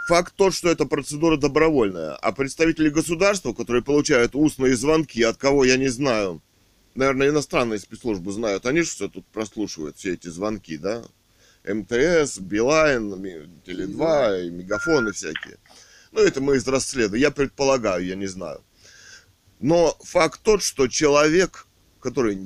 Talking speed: 145 wpm